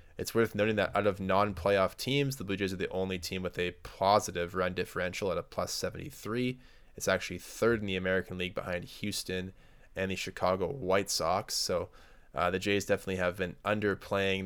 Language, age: English, 20-39